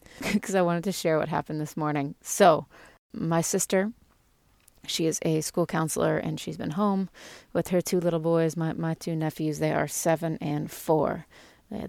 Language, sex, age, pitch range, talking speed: English, female, 30-49, 160-190 Hz, 180 wpm